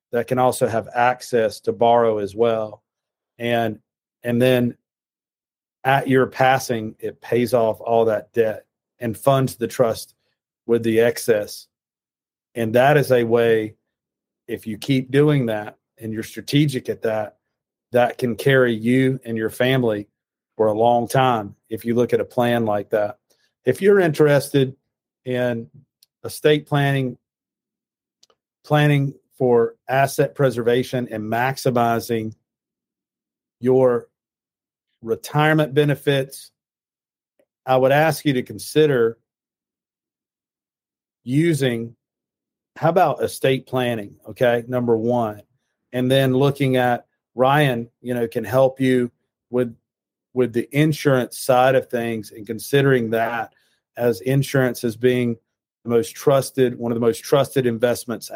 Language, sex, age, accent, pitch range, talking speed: English, male, 40-59, American, 115-135 Hz, 130 wpm